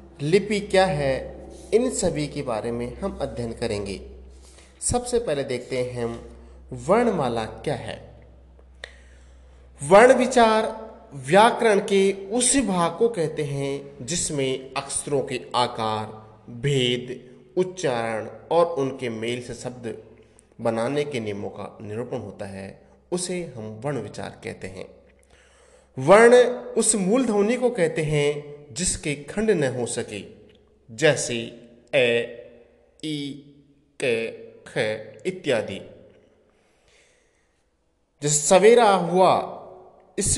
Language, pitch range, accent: Hindi, 120-190 Hz, native